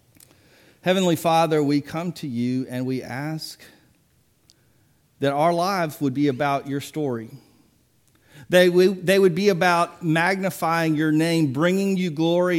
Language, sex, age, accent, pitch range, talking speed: English, male, 50-69, American, 130-160 Hz, 130 wpm